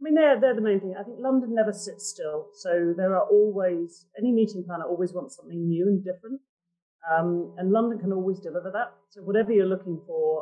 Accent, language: British, English